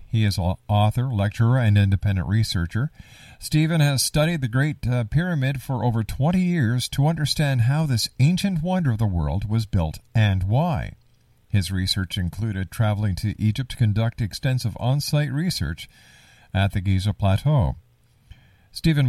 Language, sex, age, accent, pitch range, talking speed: English, male, 50-69, American, 100-130 Hz, 150 wpm